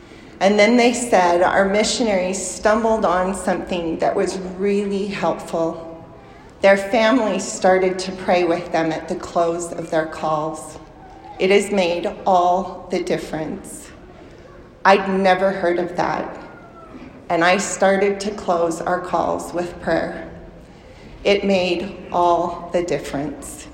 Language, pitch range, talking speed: English, 180-200 Hz, 130 wpm